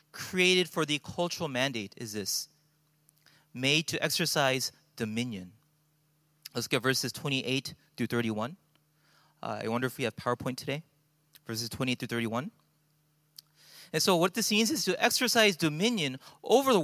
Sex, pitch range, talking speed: male, 150-205 Hz, 145 wpm